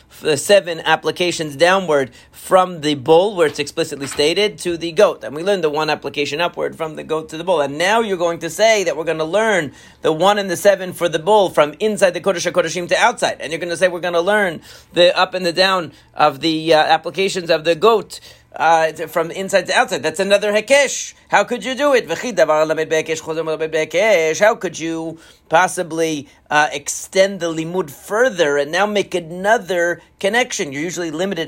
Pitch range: 150-195 Hz